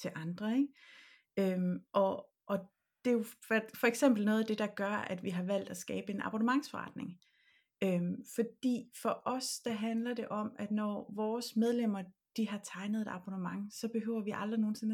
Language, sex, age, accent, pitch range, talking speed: Danish, female, 30-49, native, 195-235 Hz, 185 wpm